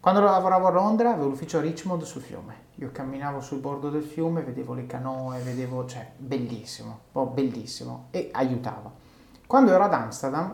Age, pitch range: 30-49, 135-170 Hz